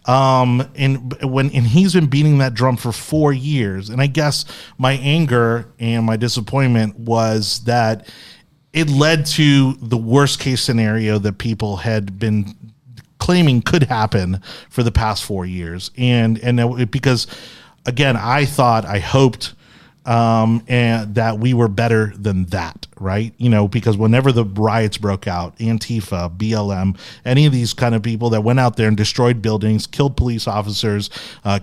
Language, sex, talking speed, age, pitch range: English, male, 160 wpm, 30-49, 110-130 Hz